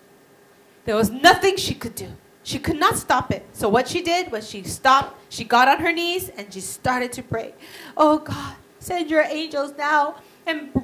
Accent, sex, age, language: American, female, 30-49, Korean